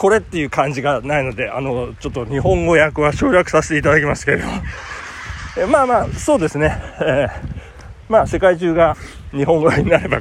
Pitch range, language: 120-190 Hz, Japanese